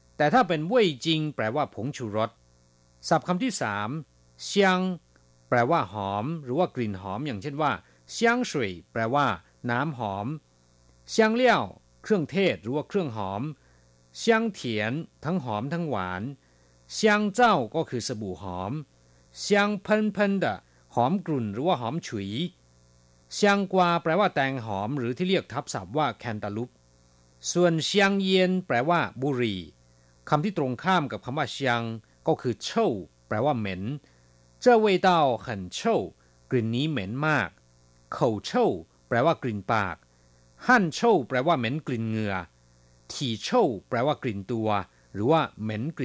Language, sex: Thai, male